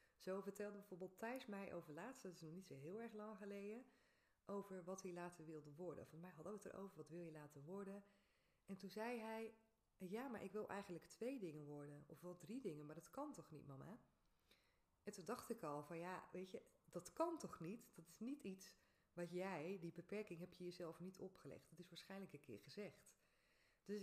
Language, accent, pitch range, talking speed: Dutch, Dutch, 160-205 Hz, 220 wpm